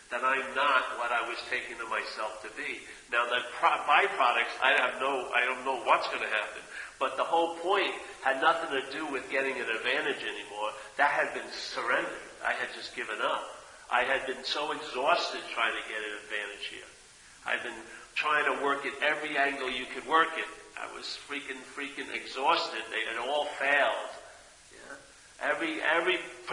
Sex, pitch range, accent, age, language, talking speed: male, 130-155 Hz, American, 50-69, English, 180 wpm